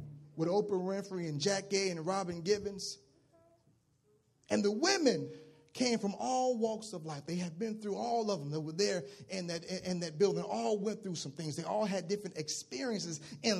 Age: 30-49